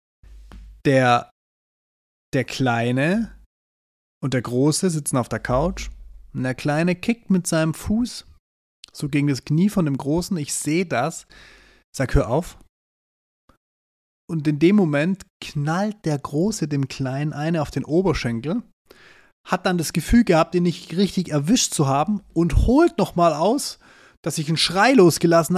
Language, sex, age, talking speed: German, male, 30-49, 150 wpm